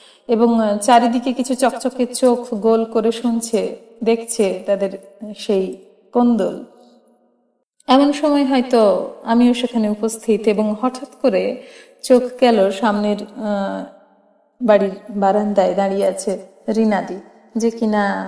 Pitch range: 200-235 Hz